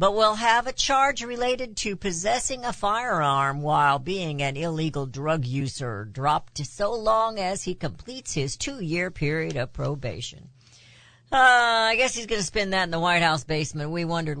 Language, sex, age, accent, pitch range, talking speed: English, female, 60-79, American, 130-185 Hz, 175 wpm